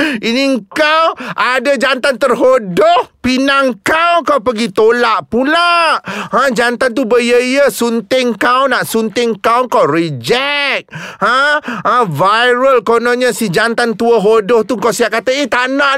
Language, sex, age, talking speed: Malay, male, 30-49, 130 wpm